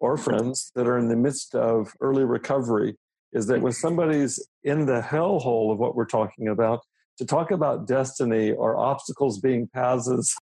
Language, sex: English, male